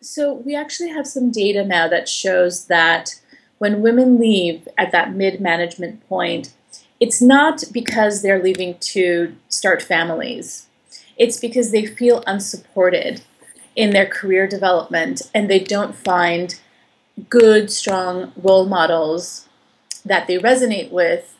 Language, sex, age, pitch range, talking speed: English, female, 30-49, 180-230 Hz, 130 wpm